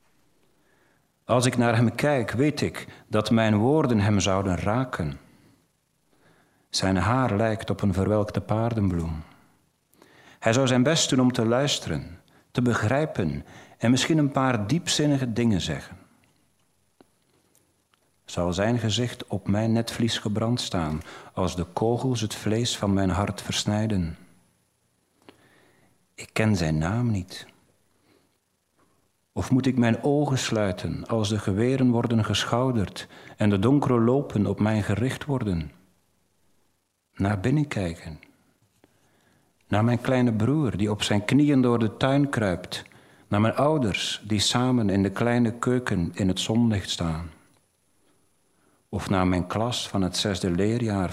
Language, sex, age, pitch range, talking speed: Dutch, male, 40-59, 90-120 Hz, 135 wpm